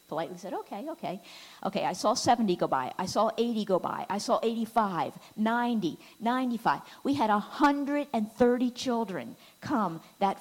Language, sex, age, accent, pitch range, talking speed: English, female, 50-69, American, 205-280 Hz, 150 wpm